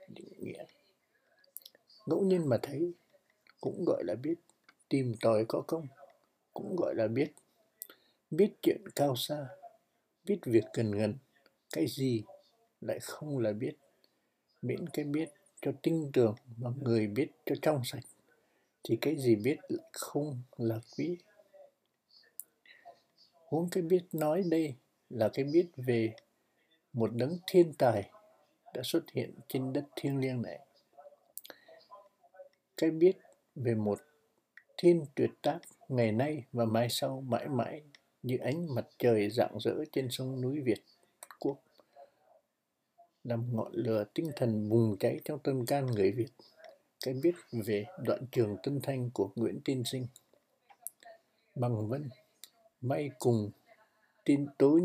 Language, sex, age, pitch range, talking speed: Vietnamese, male, 60-79, 120-175 Hz, 135 wpm